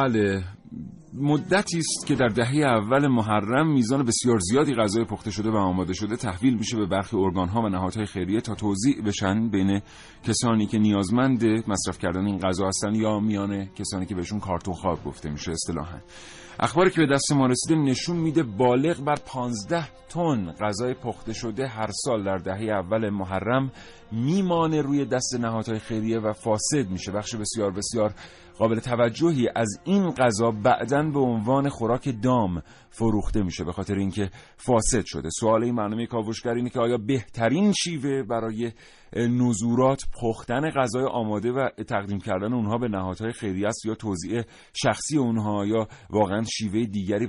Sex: male